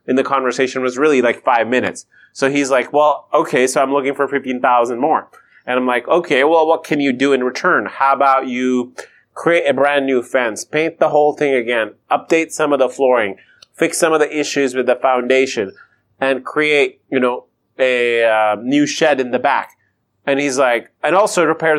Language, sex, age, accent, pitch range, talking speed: English, male, 30-49, American, 130-155 Hz, 200 wpm